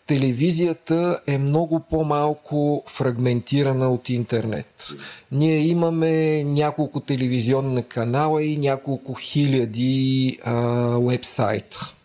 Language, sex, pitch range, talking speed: Bulgarian, male, 125-155 Hz, 80 wpm